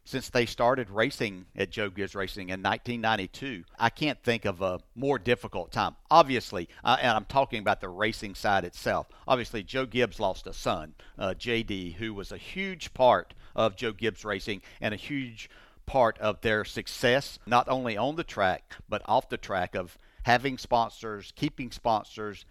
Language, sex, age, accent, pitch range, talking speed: English, male, 60-79, American, 105-130 Hz, 175 wpm